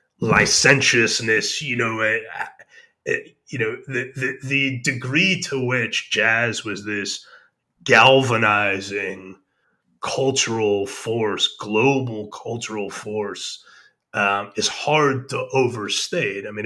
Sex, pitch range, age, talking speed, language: male, 105-135 Hz, 30-49, 95 wpm, English